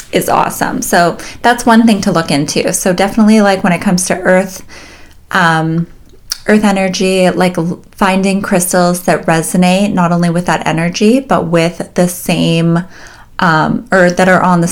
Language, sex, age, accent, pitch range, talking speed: English, female, 30-49, American, 165-205 Hz, 165 wpm